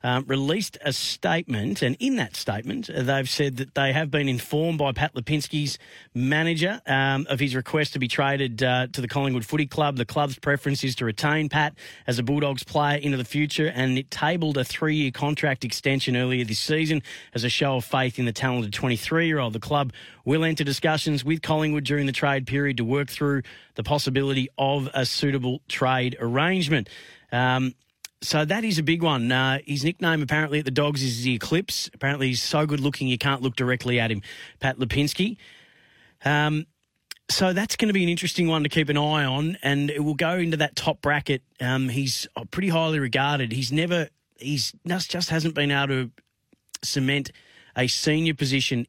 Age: 30-49